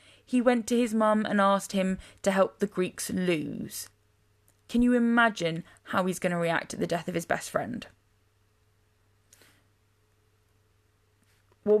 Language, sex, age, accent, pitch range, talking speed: English, female, 20-39, British, 165-210 Hz, 145 wpm